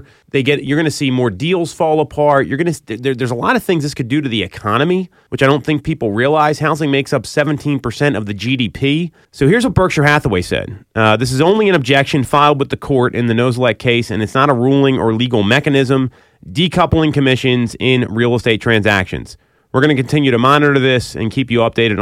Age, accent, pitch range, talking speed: 30-49, American, 110-145 Hz, 225 wpm